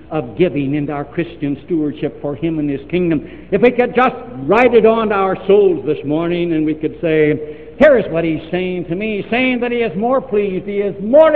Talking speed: 220 wpm